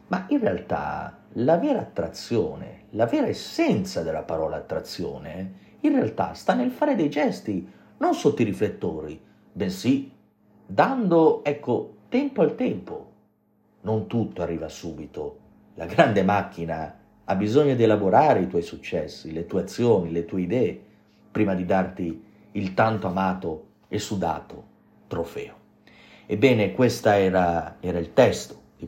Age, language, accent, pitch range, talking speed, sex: 40-59, Italian, native, 85-105 Hz, 135 wpm, male